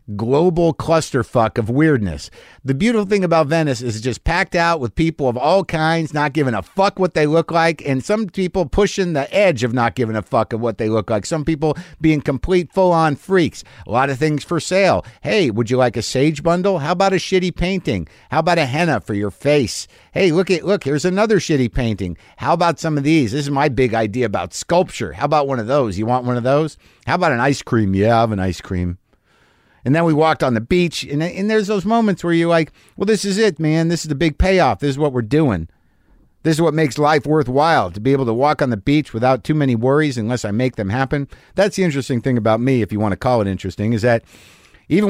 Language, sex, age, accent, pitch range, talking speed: English, male, 50-69, American, 120-165 Hz, 245 wpm